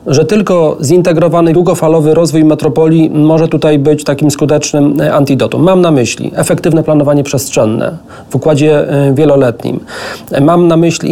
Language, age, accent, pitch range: Polish, 40-59, native, 145-170 Hz